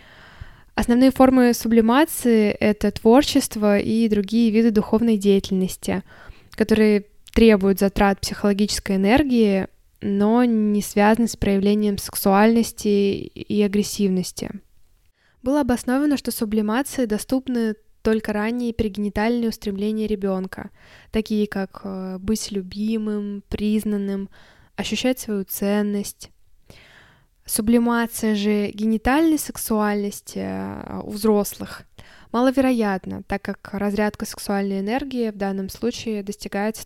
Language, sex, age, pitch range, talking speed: Russian, female, 10-29, 205-230 Hz, 95 wpm